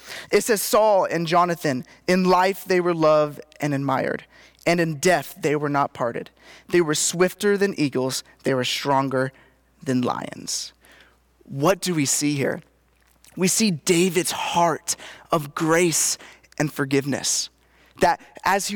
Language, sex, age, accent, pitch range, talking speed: English, male, 20-39, American, 155-195 Hz, 145 wpm